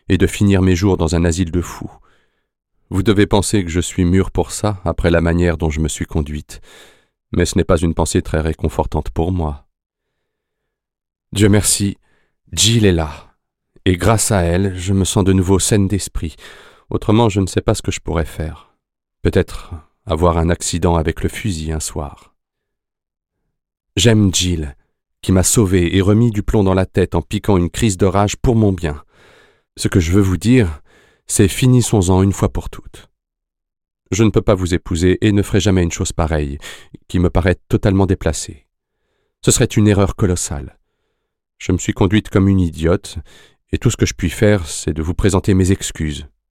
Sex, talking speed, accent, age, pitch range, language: male, 190 wpm, French, 30-49, 85-100 Hz, French